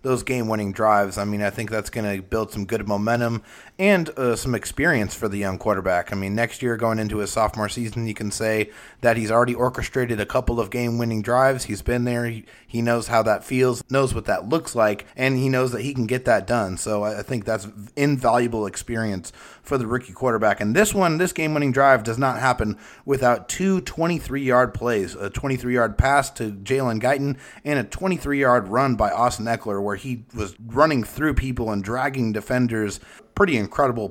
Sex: male